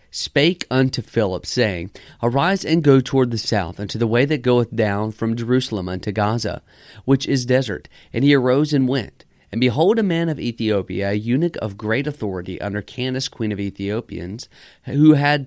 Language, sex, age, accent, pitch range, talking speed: English, male, 40-59, American, 105-140 Hz, 180 wpm